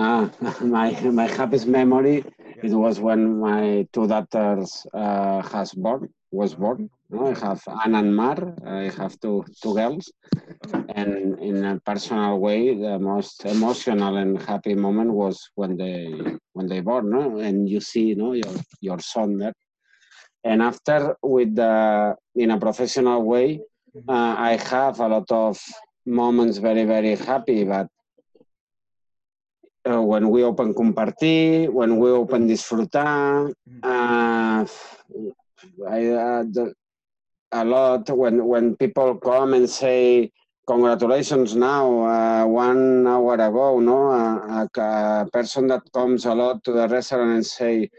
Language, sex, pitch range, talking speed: English, male, 105-125 Hz, 140 wpm